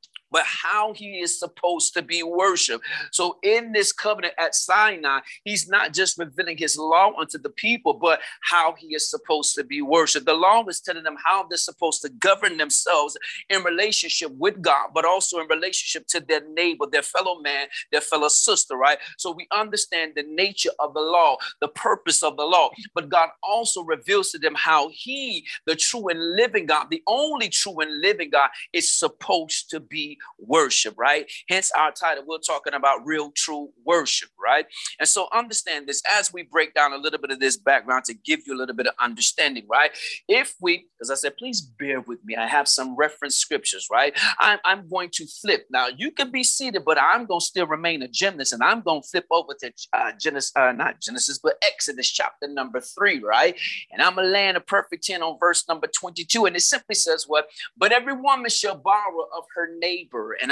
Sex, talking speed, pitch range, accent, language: male, 205 wpm, 155-210 Hz, American, English